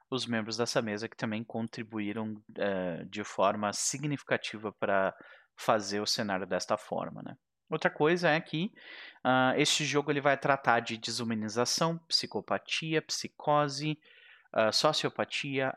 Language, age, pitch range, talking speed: Portuguese, 30-49, 110-140 Hz, 115 wpm